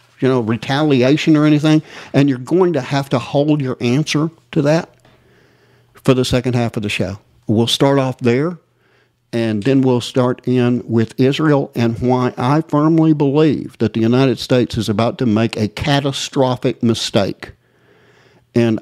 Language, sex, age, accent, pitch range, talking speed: English, male, 60-79, American, 110-135 Hz, 165 wpm